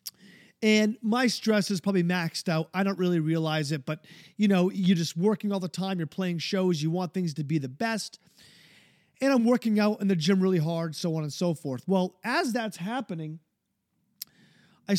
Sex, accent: male, American